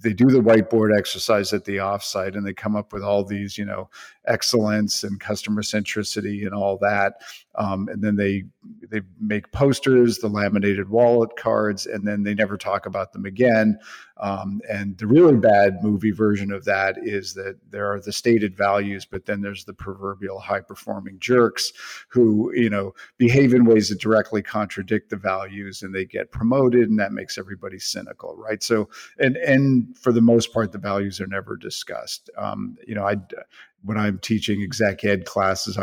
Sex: male